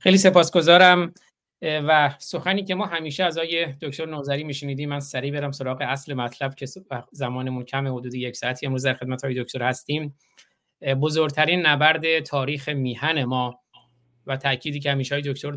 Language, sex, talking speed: Persian, male, 155 wpm